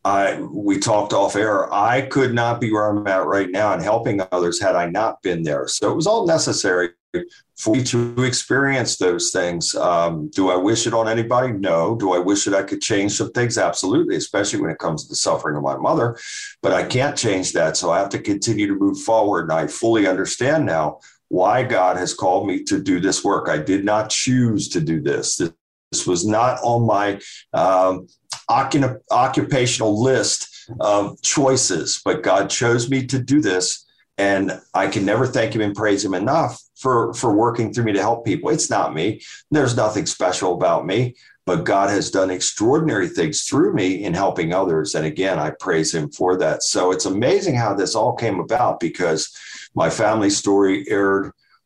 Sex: male